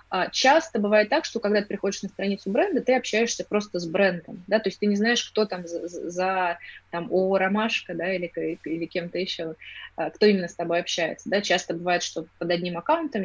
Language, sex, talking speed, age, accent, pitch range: Russian, female, 200 wpm, 20-39, native, 170-215 Hz